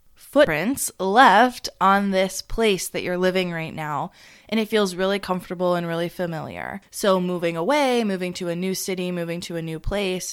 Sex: female